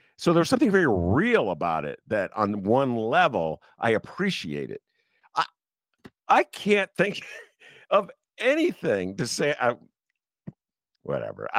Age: 50-69